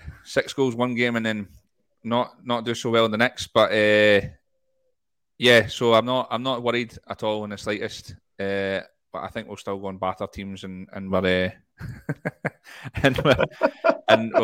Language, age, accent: English, 30-49, British